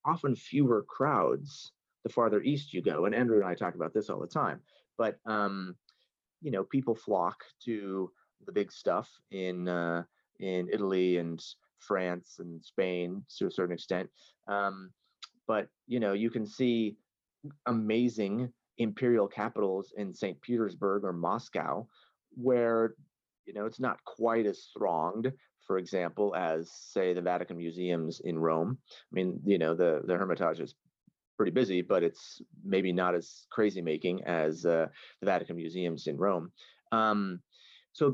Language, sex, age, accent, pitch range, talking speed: English, male, 30-49, American, 90-115 Hz, 155 wpm